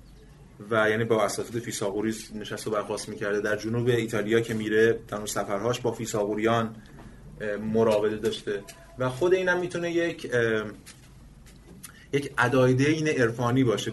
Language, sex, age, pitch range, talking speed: Persian, male, 30-49, 110-135 Hz, 130 wpm